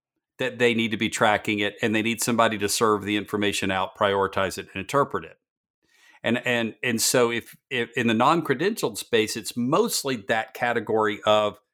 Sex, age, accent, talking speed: male, 50-69, American, 185 wpm